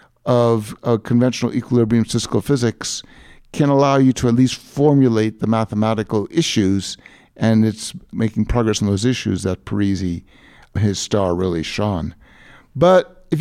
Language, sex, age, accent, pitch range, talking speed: English, male, 50-69, American, 110-155 Hz, 140 wpm